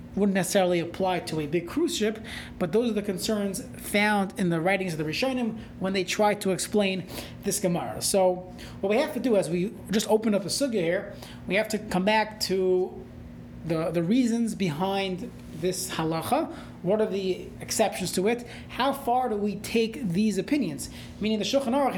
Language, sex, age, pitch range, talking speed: English, male, 30-49, 180-225 Hz, 190 wpm